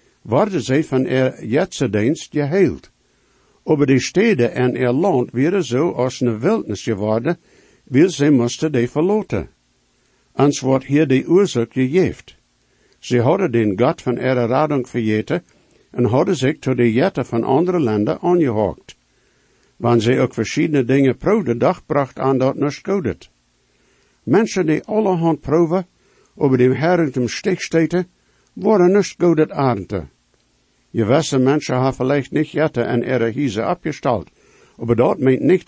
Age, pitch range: 60-79, 120-155 Hz